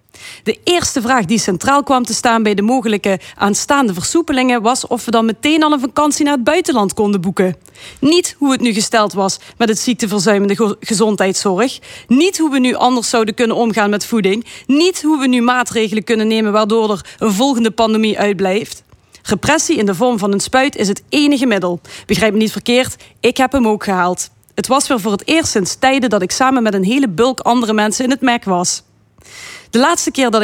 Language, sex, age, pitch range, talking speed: Dutch, female, 30-49, 205-260 Hz, 205 wpm